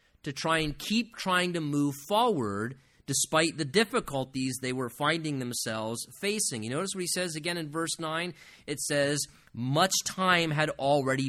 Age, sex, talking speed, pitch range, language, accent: 30-49, male, 165 wpm, 135-175 Hz, English, American